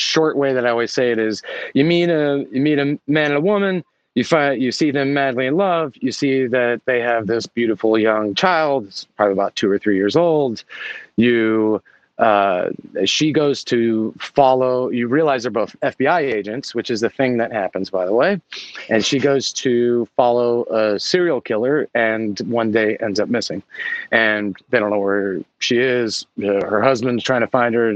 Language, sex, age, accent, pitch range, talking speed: English, male, 30-49, American, 105-130 Hz, 195 wpm